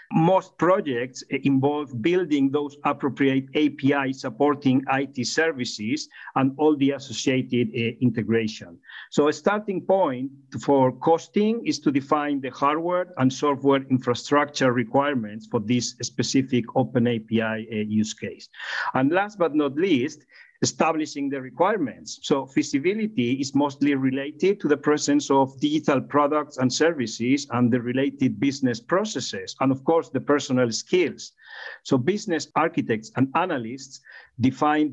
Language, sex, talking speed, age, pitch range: English, male, 130 wpm, 50-69, 125-155 Hz